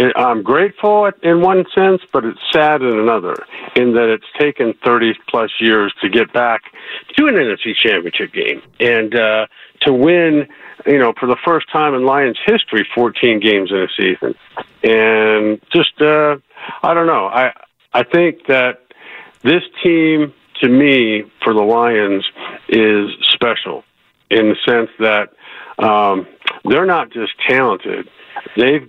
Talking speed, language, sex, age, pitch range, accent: 150 wpm, English, male, 50-69, 105-150 Hz, American